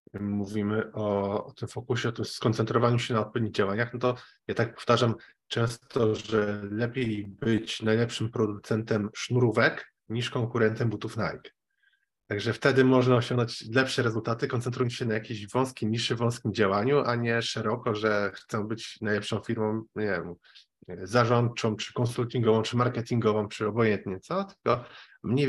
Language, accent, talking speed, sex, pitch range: Polish, native, 140 wpm, male, 105-125 Hz